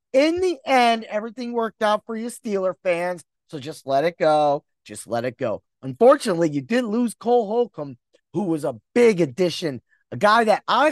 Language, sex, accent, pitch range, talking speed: English, male, American, 180-265 Hz, 185 wpm